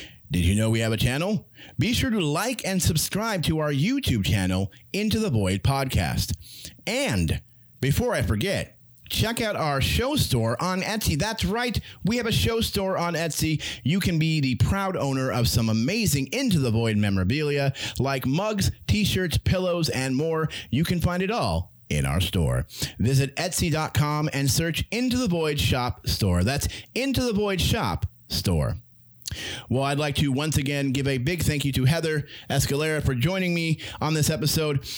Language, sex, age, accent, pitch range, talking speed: English, male, 30-49, American, 115-160 Hz, 175 wpm